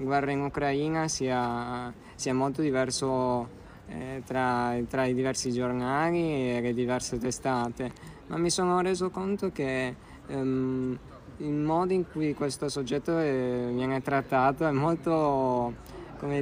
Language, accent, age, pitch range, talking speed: Italian, native, 20-39, 130-145 Hz, 135 wpm